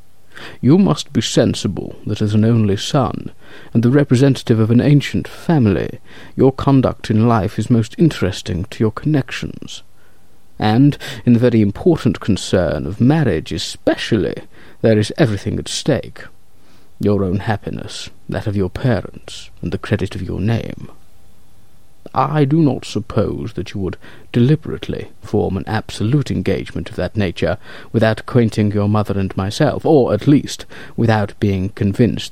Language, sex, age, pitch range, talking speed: English, male, 50-69, 100-125 Hz, 150 wpm